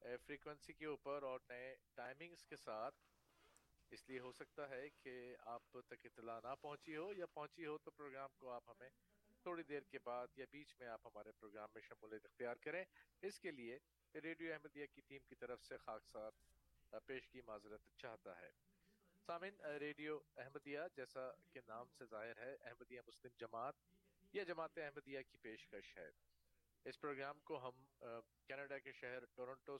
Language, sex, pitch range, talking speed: Urdu, male, 115-150 Hz, 105 wpm